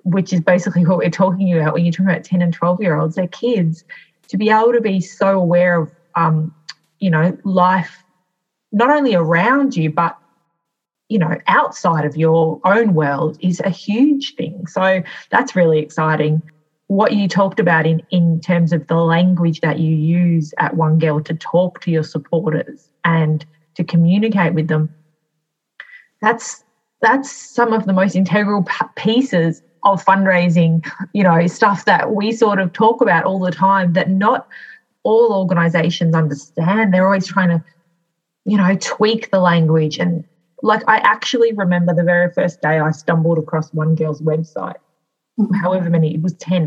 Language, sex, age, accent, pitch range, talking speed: English, female, 20-39, Australian, 160-190 Hz, 165 wpm